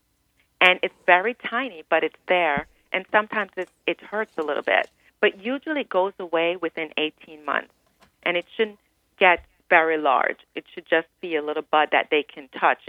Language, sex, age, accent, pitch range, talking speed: English, female, 40-59, American, 155-195 Hz, 180 wpm